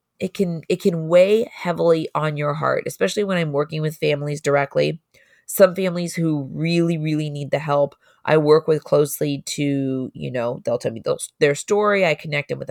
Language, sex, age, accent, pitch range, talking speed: English, female, 20-39, American, 145-175 Hz, 190 wpm